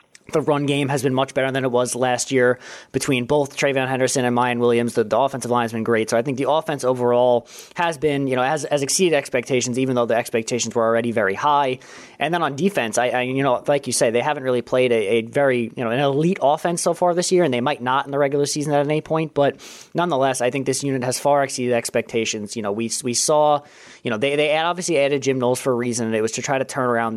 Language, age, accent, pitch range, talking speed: English, 20-39, American, 120-145 Hz, 265 wpm